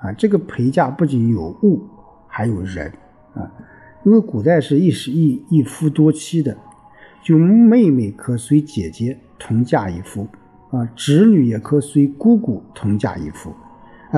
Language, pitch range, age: Chinese, 105-150 Hz, 50-69